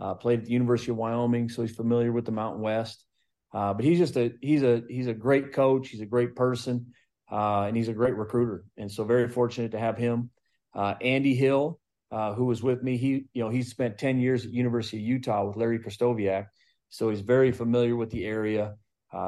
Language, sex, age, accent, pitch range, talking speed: English, male, 40-59, American, 110-125 Hz, 225 wpm